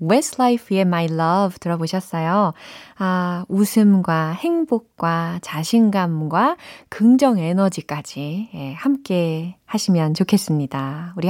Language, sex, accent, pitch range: Korean, female, native, 165-235 Hz